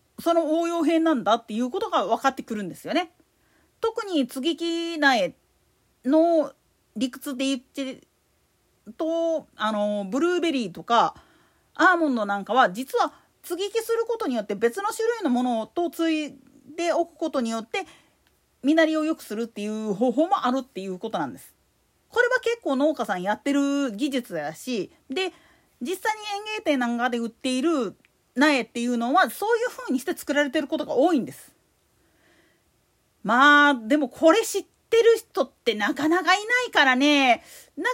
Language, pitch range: Japanese, 255-345 Hz